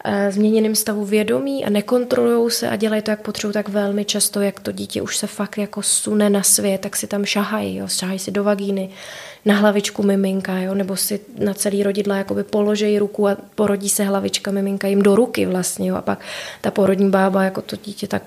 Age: 20-39